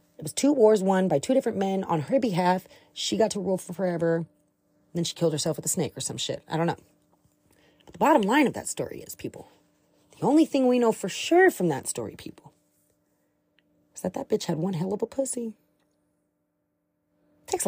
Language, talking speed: English, 215 wpm